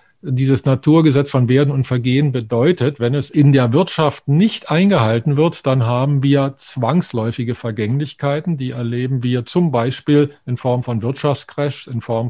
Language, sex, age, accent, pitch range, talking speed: German, male, 50-69, German, 120-150 Hz, 150 wpm